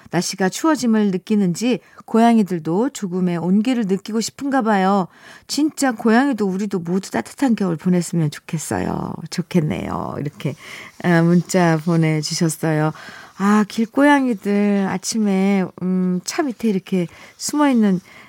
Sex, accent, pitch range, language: female, native, 175-250 Hz, Korean